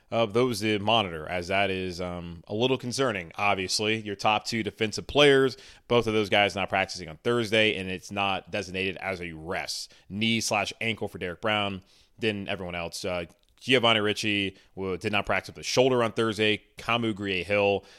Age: 30-49